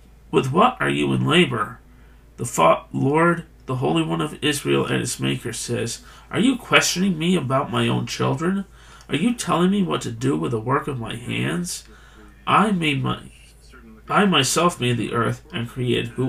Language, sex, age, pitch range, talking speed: English, male, 40-59, 110-175 Hz, 175 wpm